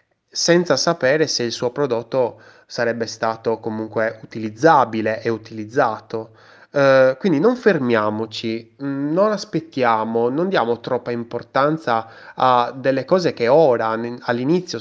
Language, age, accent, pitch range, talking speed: Italian, 20-39, native, 110-145 Hz, 115 wpm